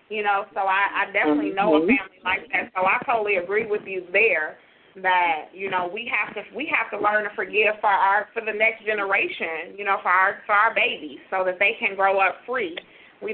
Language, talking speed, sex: English, 230 wpm, female